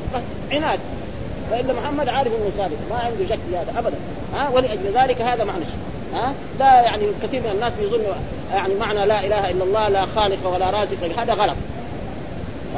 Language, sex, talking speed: Arabic, male, 180 wpm